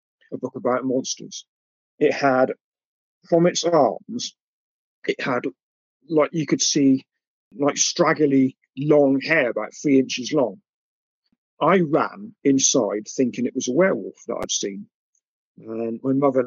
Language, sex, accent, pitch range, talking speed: English, male, British, 120-145 Hz, 135 wpm